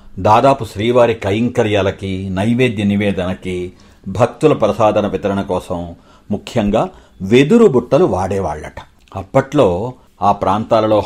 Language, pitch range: Telugu, 100-130 Hz